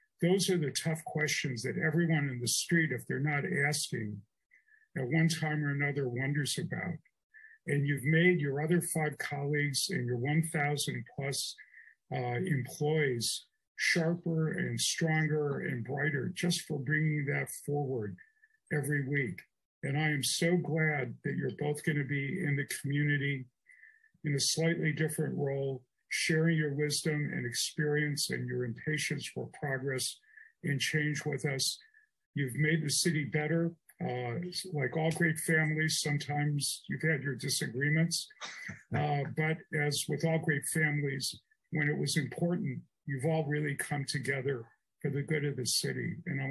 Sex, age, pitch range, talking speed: male, 50-69, 140-160 Hz, 150 wpm